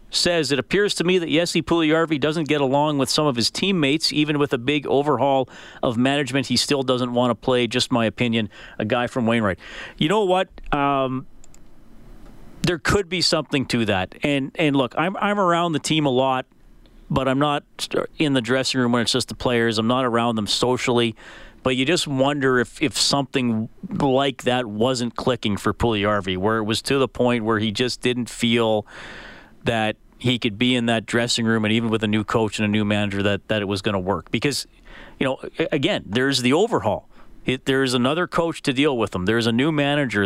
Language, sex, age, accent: English, male, 40-59, American